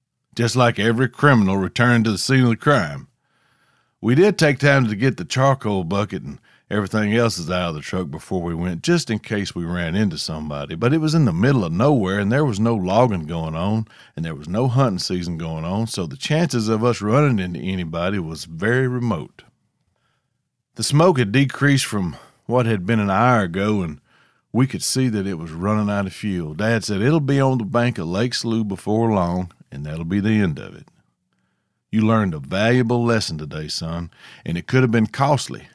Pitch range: 90-125 Hz